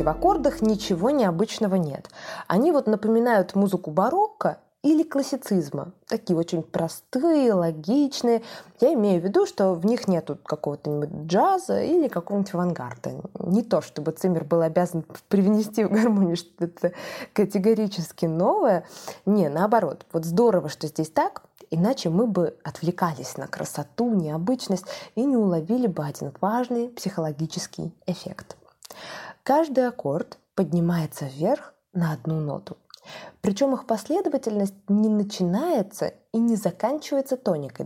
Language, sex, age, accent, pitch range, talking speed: Russian, female, 20-39, native, 170-225 Hz, 125 wpm